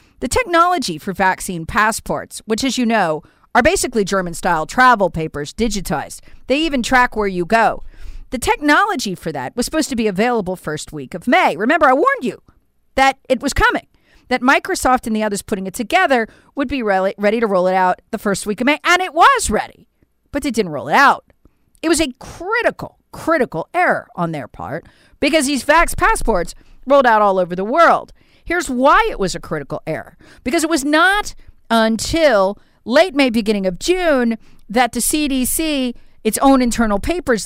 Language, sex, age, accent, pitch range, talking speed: English, female, 50-69, American, 200-300 Hz, 185 wpm